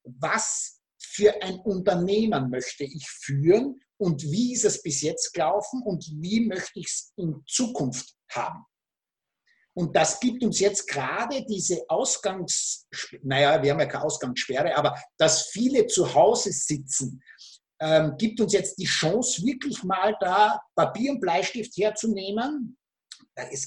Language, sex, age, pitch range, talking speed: German, male, 50-69, 150-215 Hz, 140 wpm